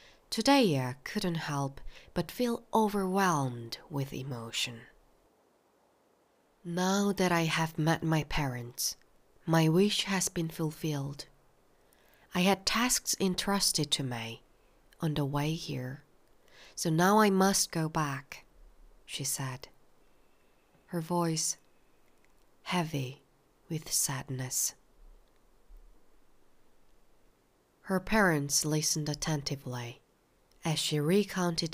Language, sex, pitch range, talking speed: English, female, 135-175 Hz, 95 wpm